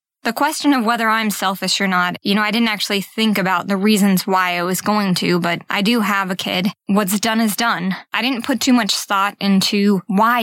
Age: 20-39